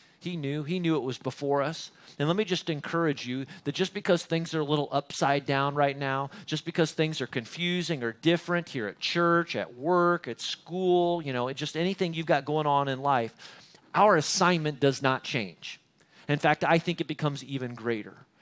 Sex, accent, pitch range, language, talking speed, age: male, American, 120-155 Hz, English, 200 wpm, 40-59